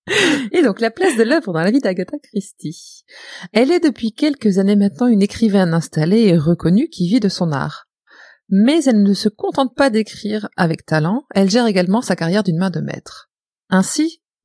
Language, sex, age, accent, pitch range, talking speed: French, female, 30-49, French, 190-265 Hz, 190 wpm